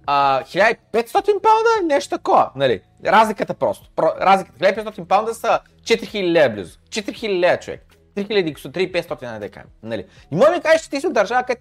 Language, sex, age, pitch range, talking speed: Bulgarian, male, 30-49, 145-220 Hz, 170 wpm